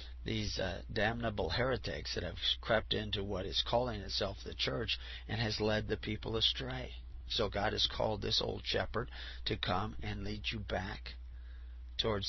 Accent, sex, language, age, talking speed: American, male, English, 50-69, 165 wpm